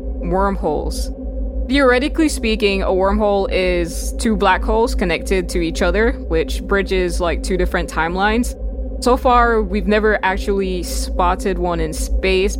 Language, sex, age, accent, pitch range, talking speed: English, female, 20-39, American, 185-225 Hz, 135 wpm